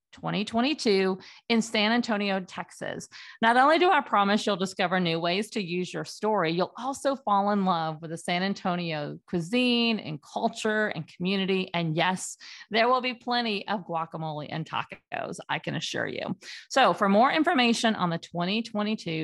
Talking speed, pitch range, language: 165 wpm, 170-230 Hz, English